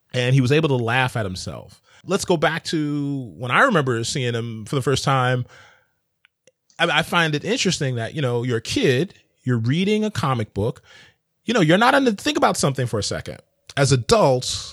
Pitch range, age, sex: 115-150 Hz, 30-49, male